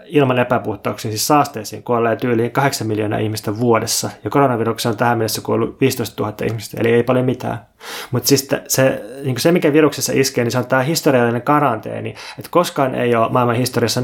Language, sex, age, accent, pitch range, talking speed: Finnish, male, 20-39, native, 115-135 Hz, 185 wpm